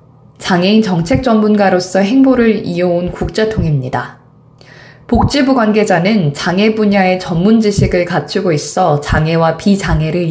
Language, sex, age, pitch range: Korean, female, 20-39, 160-220 Hz